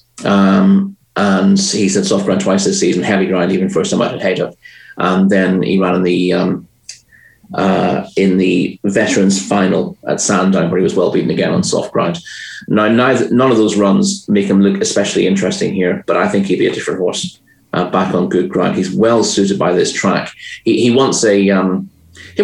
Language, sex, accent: English, male, British